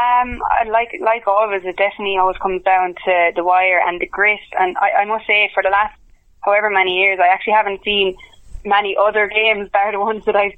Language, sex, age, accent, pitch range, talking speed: English, female, 20-39, Irish, 180-200 Hz, 215 wpm